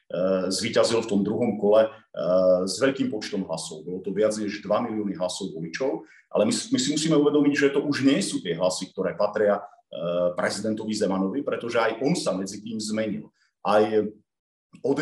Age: 40-59